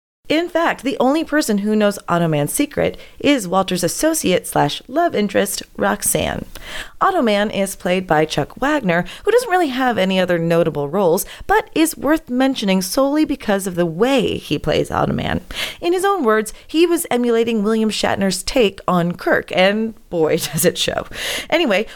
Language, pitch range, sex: English, 175-270 Hz, female